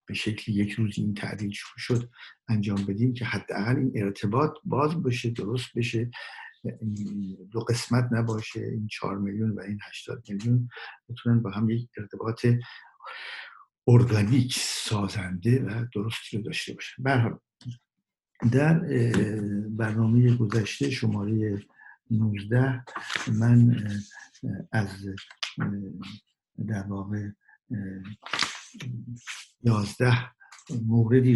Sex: male